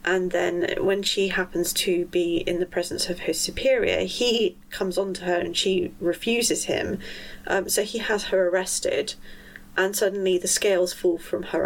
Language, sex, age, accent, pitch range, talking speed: English, female, 30-49, British, 180-225 Hz, 180 wpm